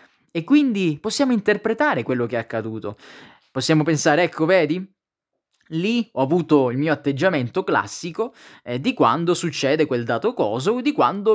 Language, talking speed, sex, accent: Italian, 155 wpm, male, native